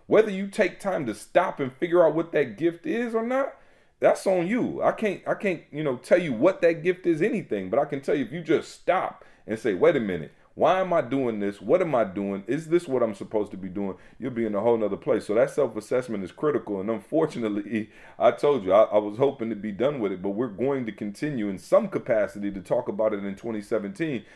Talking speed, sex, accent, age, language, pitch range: 250 wpm, male, American, 30-49, English, 110-160 Hz